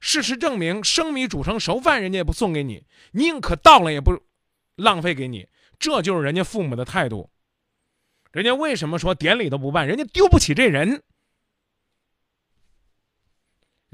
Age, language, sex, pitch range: 20-39, Chinese, male, 140-210 Hz